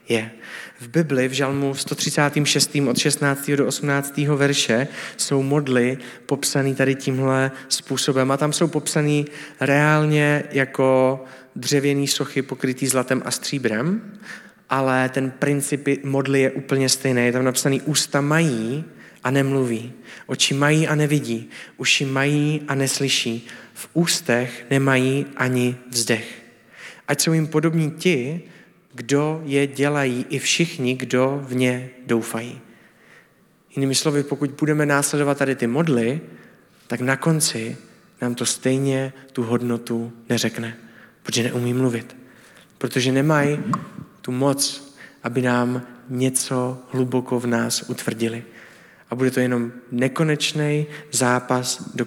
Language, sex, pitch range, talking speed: Czech, male, 125-150 Hz, 125 wpm